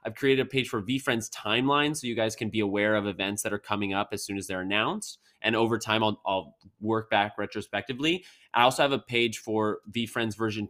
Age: 20-39